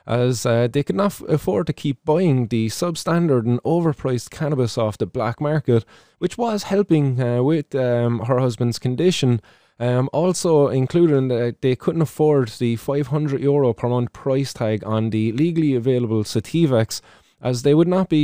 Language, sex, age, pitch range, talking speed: English, male, 20-39, 115-150 Hz, 170 wpm